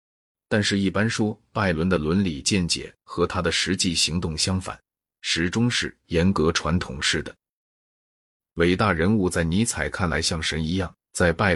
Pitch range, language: 85-110 Hz, Chinese